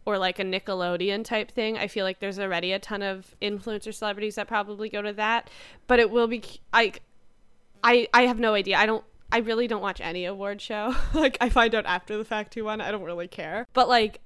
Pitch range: 190-235 Hz